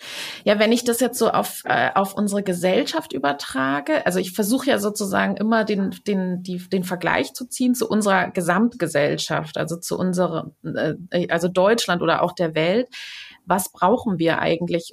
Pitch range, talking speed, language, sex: 180-235 Hz, 170 wpm, German, female